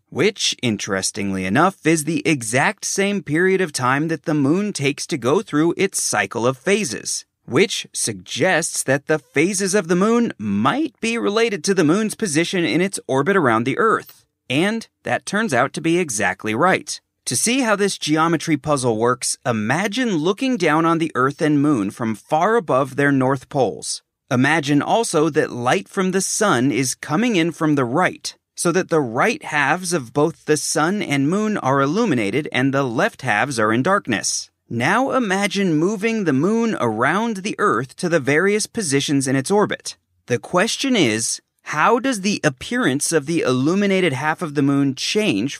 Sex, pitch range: male, 135-195 Hz